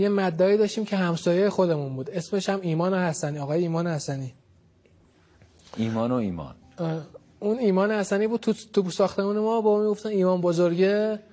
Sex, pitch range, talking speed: male, 160-195 Hz, 155 wpm